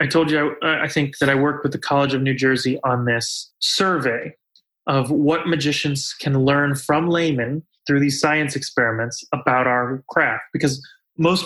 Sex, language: male, English